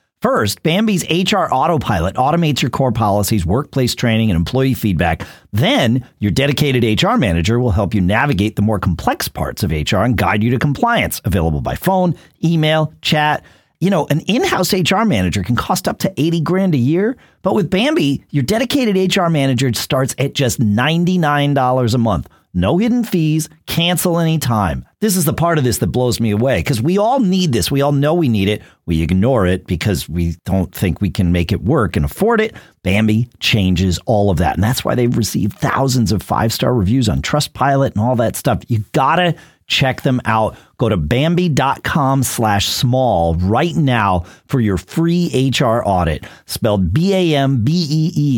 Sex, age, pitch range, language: male, 40-59, 105-160 Hz, English